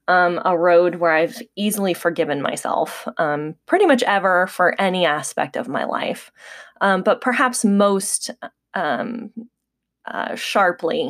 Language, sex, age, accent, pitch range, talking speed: English, female, 20-39, American, 160-215 Hz, 135 wpm